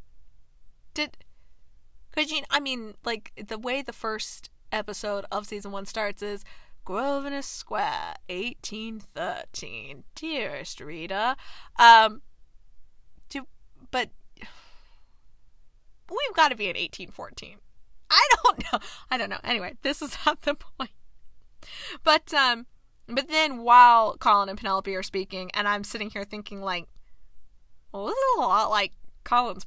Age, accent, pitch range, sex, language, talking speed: 20-39, American, 205-280 Hz, female, English, 135 wpm